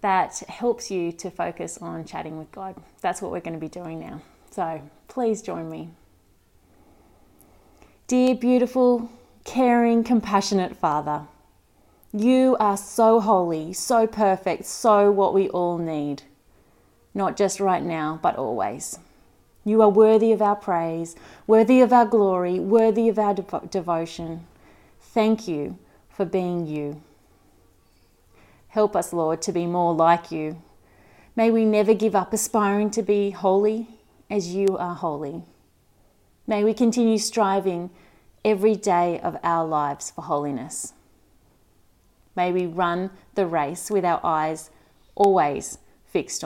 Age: 30-49